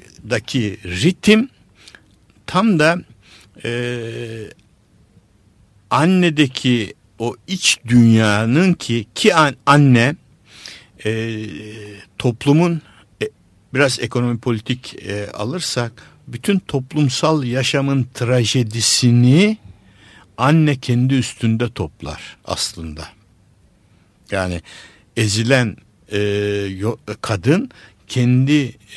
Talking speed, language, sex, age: 75 wpm, Turkish, male, 60-79